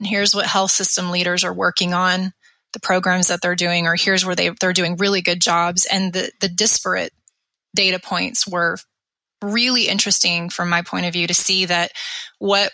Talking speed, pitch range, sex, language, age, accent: 190 wpm, 180-210 Hz, female, English, 20-39, American